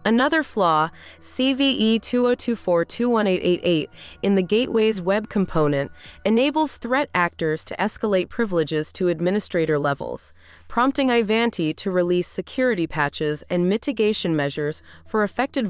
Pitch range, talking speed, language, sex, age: 165-235 Hz, 110 wpm, English, female, 20-39